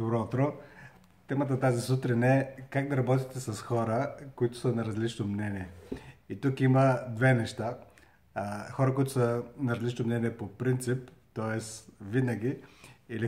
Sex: male